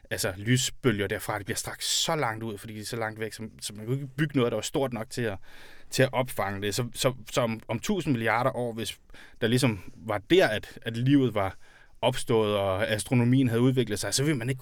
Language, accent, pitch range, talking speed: Danish, native, 110-135 Hz, 235 wpm